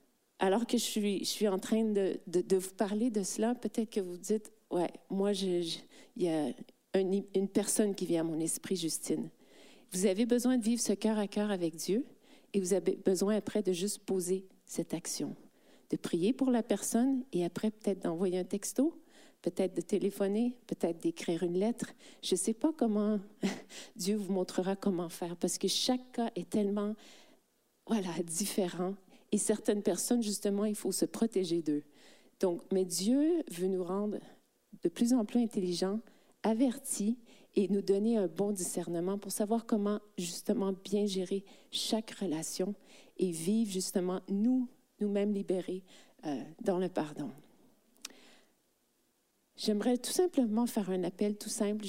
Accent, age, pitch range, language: Canadian, 40-59, 190-225 Hz, French